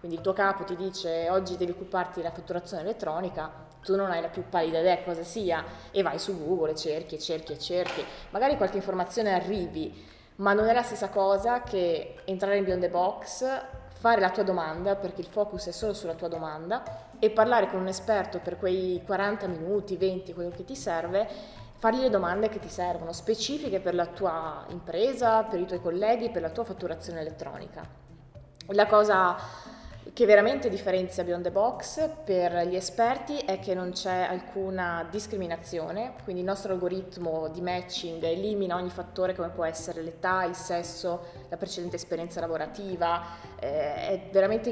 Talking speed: 175 wpm